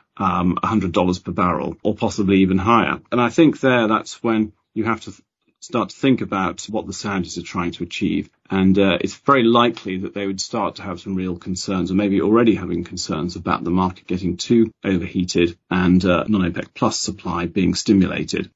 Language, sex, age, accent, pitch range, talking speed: English, male, 40-59, British, 90-115 Hz, 200 wpm